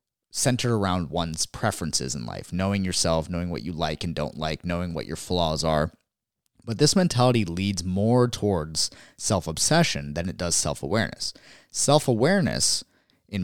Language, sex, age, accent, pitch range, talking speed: English, male, 30-49, American, 85-110 Hz, 145 wpm